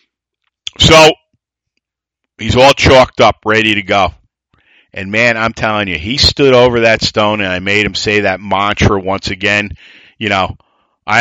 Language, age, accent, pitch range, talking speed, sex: English, 50-69, American, 100-125 Hz, 160 wpm, male